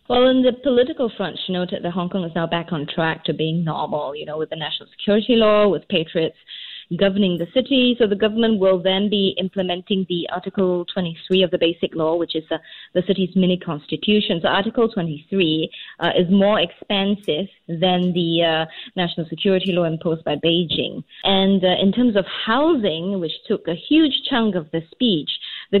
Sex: female